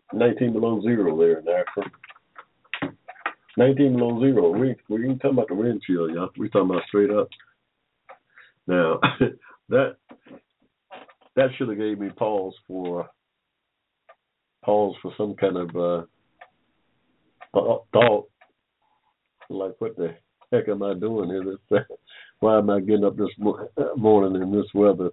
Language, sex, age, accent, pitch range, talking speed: English, male, 50-69, American, 90-110 Hz, 140 wpm